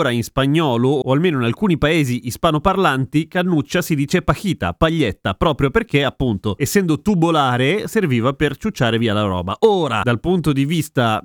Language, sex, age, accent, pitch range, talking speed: Italian, male, 30-49, native, 110-165 Hz, 160 wpm